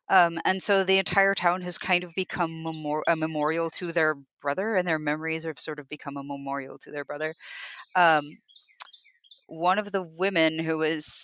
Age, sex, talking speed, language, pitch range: 30-49, female, 180 wpm, English, 150-185 Hz